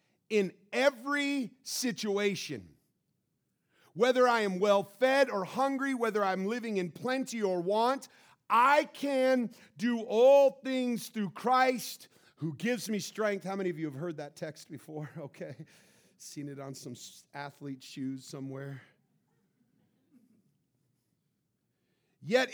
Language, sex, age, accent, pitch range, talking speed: English, male, 40-59, American, 180-245 Hz, 120 wpm